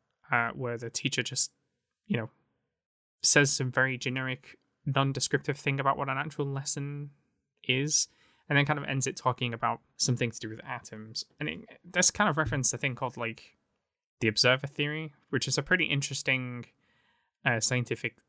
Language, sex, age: English, male, 10-29